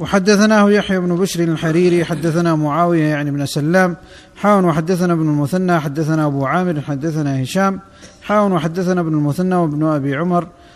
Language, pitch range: Arabic, 155-190 Hz